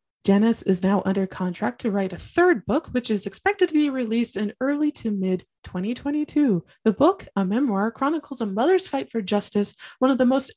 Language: English